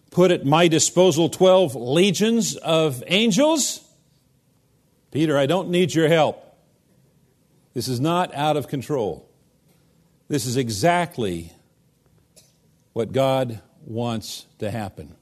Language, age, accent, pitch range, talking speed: English, 50-69, American, 115-150 Hz, 110 wpm